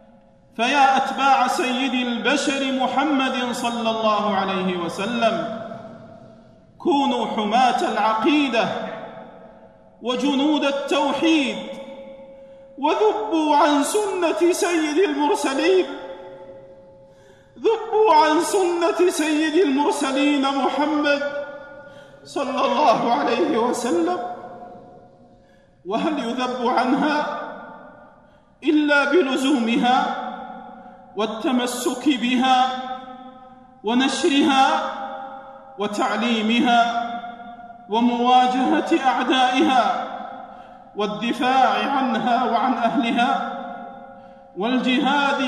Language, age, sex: Arabic, 40-59, male